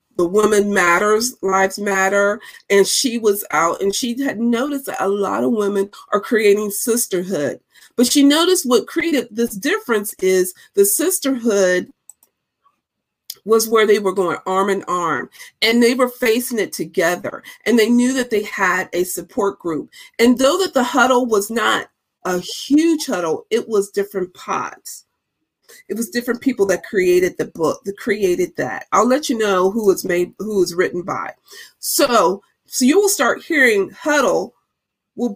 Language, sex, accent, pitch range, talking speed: English, female, American, 190-250 Hz, 165 wpm